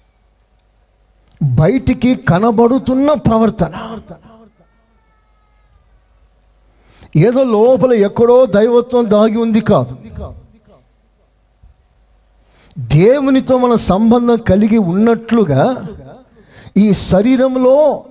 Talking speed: 55 wpm